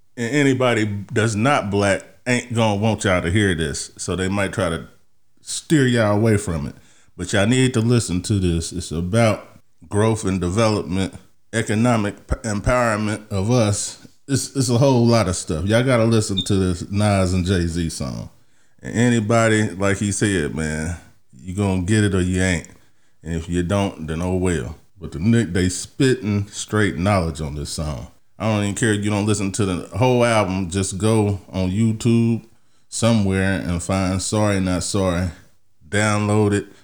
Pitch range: 95-120 Hz